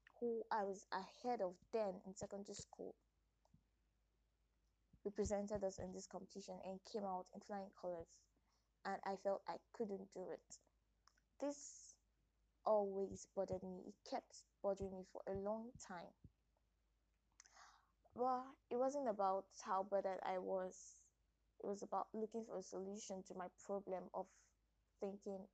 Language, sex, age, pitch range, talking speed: English, female, 20-39, 185-200 Hz, 140 wpm